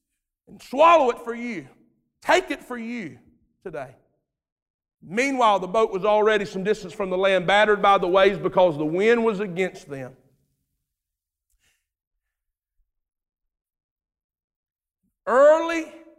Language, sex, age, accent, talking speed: English, male, 50-69, American, 110 wpm